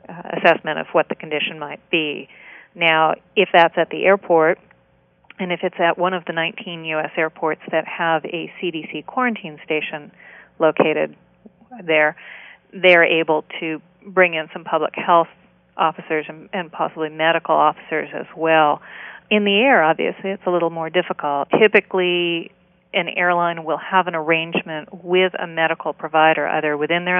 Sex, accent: female, American